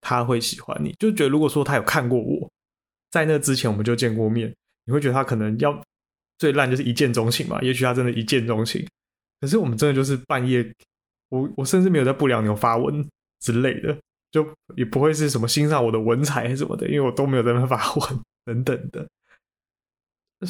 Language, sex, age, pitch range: Chinese, male, 20-39, 115-145 Hz